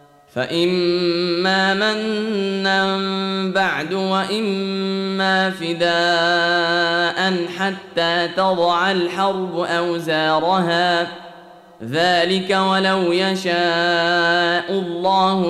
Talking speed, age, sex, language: 50 wpm, 10-29, male, Arabic